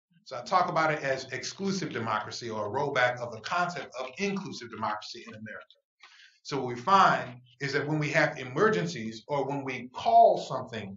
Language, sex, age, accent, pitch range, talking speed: English, male, 30-49, American, 130-170 Hz, 185 wpm